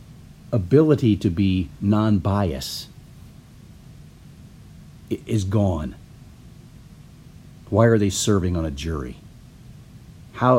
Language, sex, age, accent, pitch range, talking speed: English, male, 40-59, American, 85-110 Hz, 85 wpm